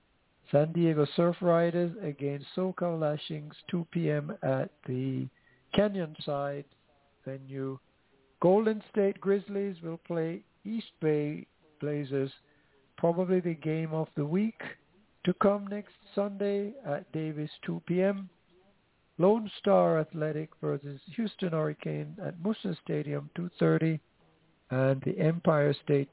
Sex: male